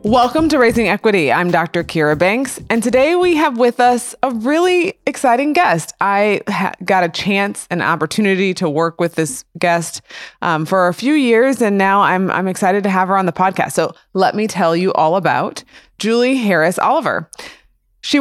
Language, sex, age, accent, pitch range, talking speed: English, female, 20-39, American, 165-220 Hz, 185 wpm